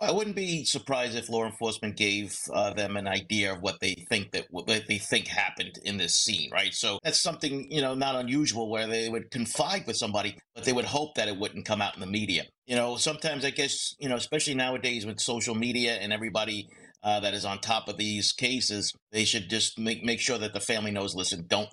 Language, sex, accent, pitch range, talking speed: English, male, American, 105-140 Hz, 230 wpm